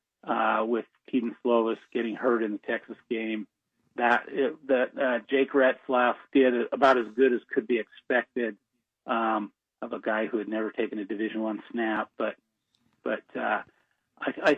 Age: 40-59